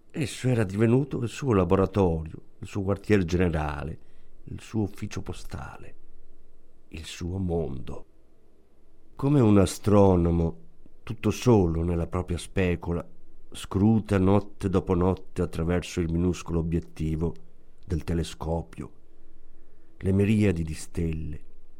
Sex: male